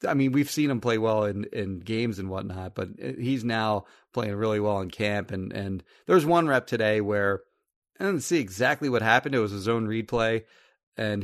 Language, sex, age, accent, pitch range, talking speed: English, male, 30-49, American, 100-120 Hz, 215 wpm